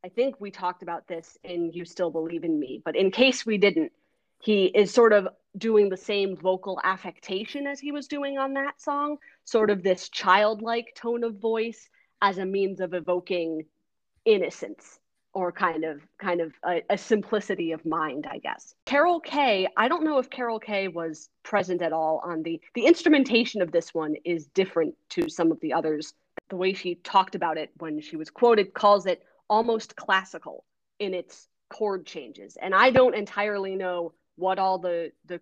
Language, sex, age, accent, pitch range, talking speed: English, female, 30-49, American, 170-230 Hz, 190 wpm